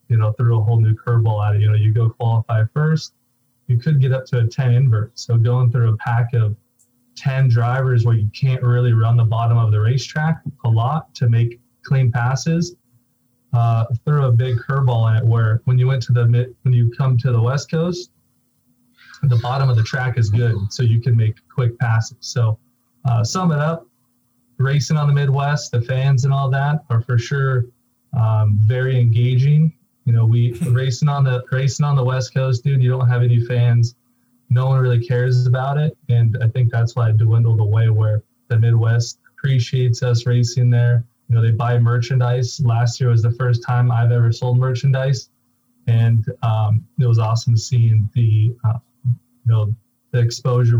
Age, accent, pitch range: 20-39, American, 115-130 Hz